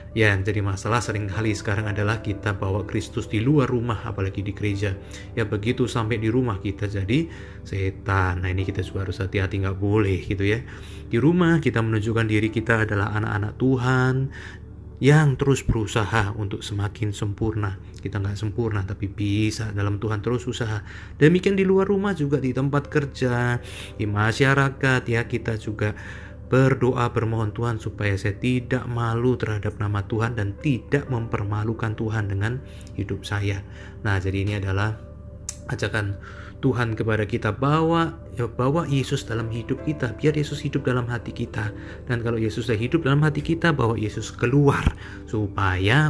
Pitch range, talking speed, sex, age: 100-120 Hz, 155 wpm, male, 30-49